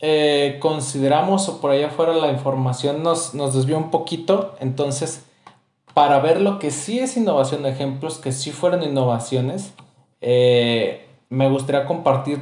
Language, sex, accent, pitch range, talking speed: Spanish, male, Mexican, 125-150 Hz, 150 wpm